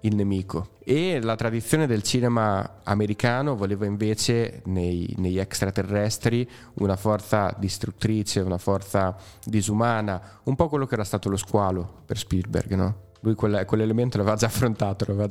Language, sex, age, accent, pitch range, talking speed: Italian, male, 20-39, native, 100-115 Hz, 145 wpm